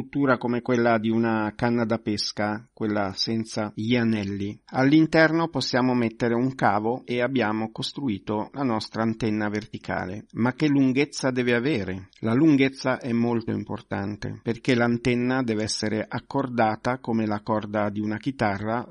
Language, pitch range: Italian, 110-135 Hz